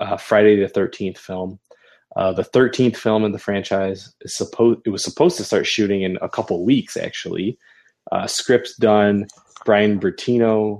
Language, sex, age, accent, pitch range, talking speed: English, male, 20-39, American, 95-110 Hz, 165 wpm